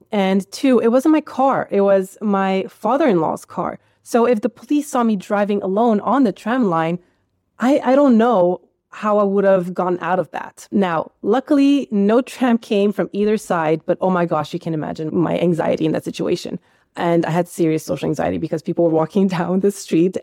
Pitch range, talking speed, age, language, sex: 175-220 Hz, 200 wpm, 20-39, English, female